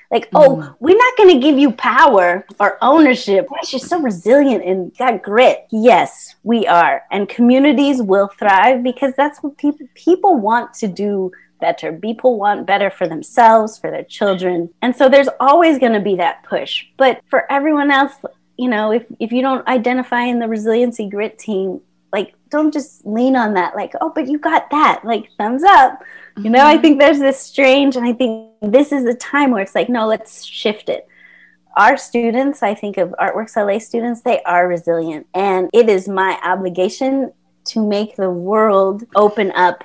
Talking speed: 185 wpm